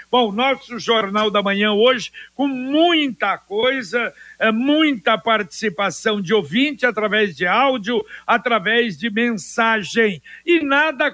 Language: Portuguese